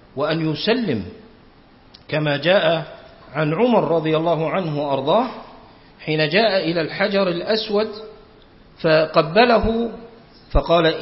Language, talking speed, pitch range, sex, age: Arabic, 95 wpm, 170-235 Hz, male, 50-69